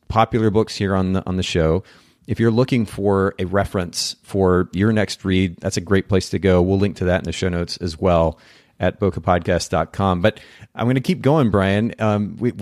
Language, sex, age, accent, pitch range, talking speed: English, male, 30-49, American, 95-115 Hz, 215 wpm